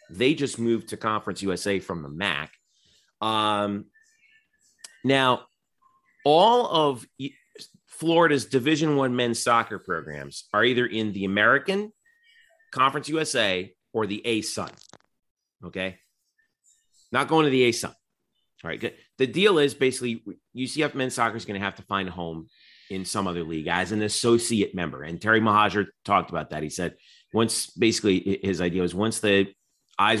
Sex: male